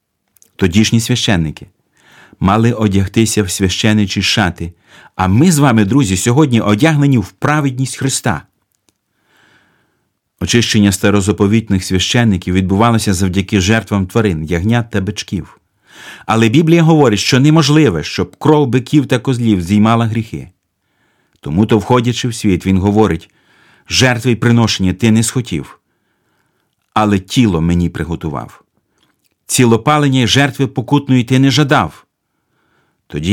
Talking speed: 110 wpm